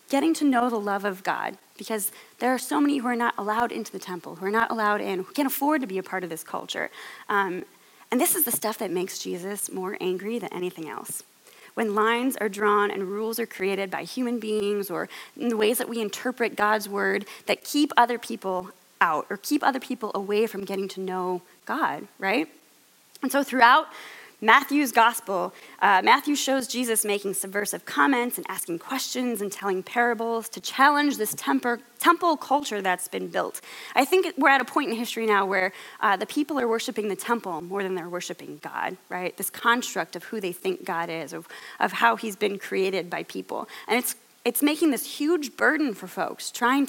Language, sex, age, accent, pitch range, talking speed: English, female, 20-39, American, 195-250 Hz, 205 wpm